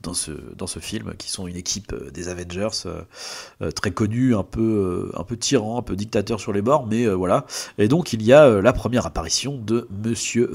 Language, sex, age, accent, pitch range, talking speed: French, male, 30-49, French, 95-120 Hz, 210 wpm